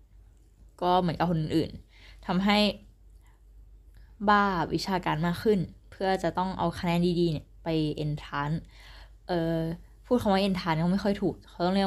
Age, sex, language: 10-29, female, Thai